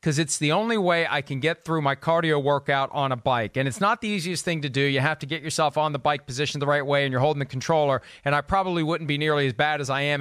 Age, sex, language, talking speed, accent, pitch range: 40-59, male, English, 300 wpm, American, 145-195 Hz